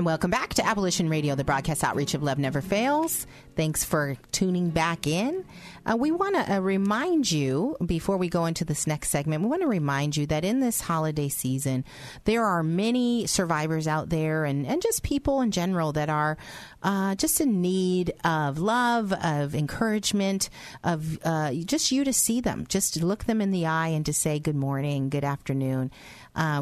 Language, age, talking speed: English, 40-59, 190 wpm